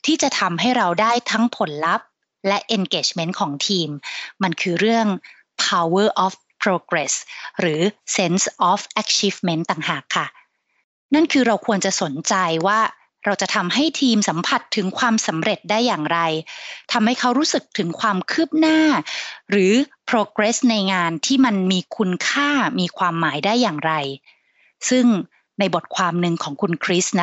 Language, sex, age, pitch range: Thai, female, 30-49, 175-230 Hz